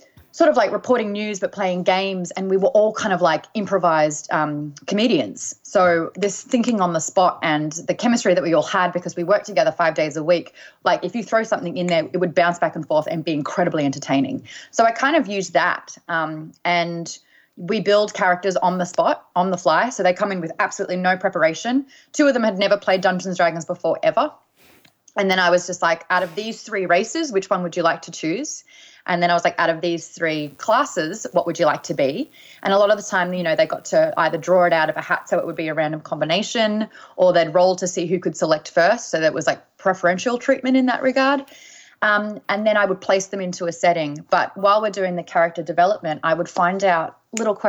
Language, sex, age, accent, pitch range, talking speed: English, female, 20-39, Australian, 170-210 Hz, 240 wpm